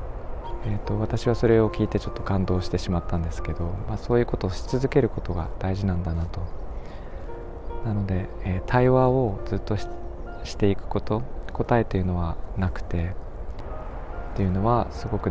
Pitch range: 85-105 Hz